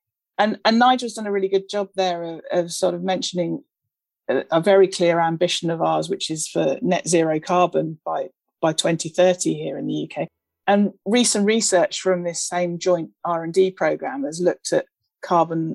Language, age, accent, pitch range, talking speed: English, 40-59, British, 170-200 Hz, 180 wpm